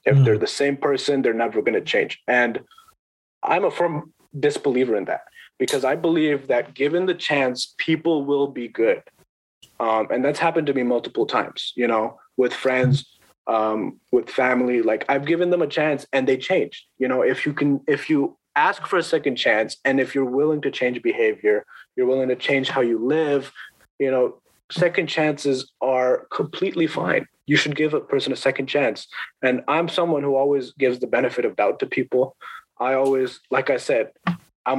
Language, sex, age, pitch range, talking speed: English, male, 30-49, 130-170 Hz, 190 wpm